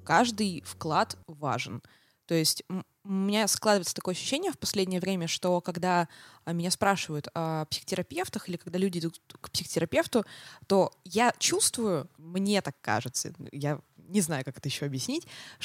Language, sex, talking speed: Russian, female, 145 wpm